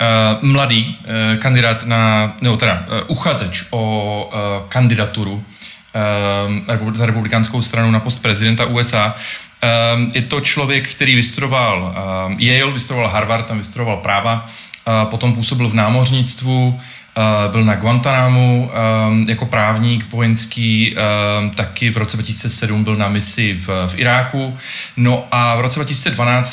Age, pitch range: 20-39, 110-125 Hz